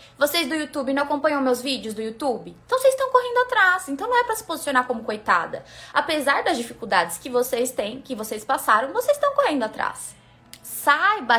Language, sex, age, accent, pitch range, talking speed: Portuguese, female, 20-39, Brazilian, 220-295 Hz, 190 wpm